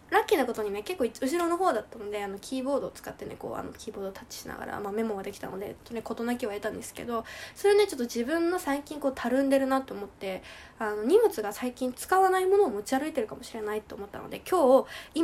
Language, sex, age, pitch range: Japanese, female, 20-39, 220-300 Hz